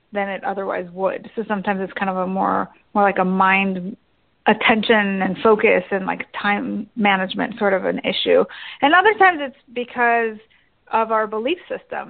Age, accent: 30-49, American